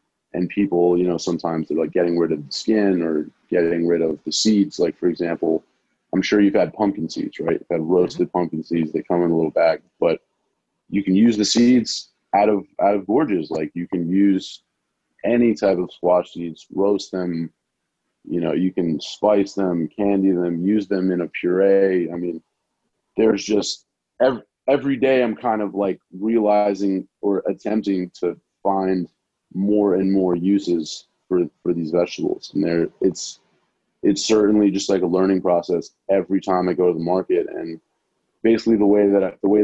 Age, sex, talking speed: 30-49, male, 190 wpm